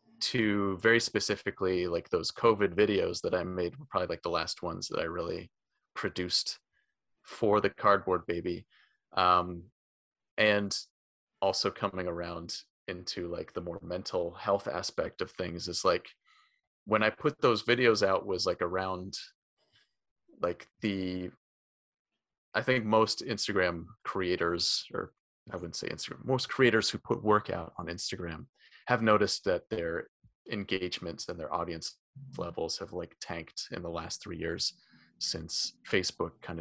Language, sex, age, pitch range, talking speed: English, male, 30-49, 90-110 Hz, 145 wpm